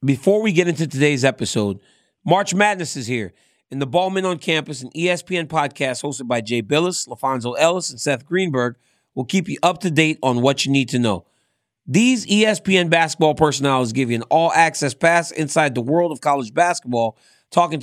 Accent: American